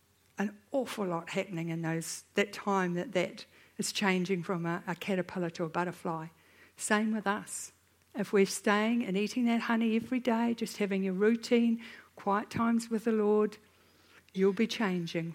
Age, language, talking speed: 60-79, English, 170 wpm